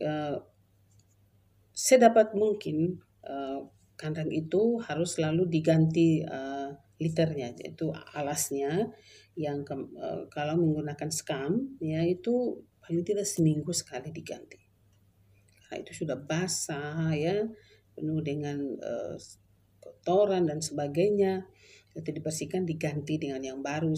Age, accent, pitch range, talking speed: 40-59, native, 140-170 Hz, 105 wpm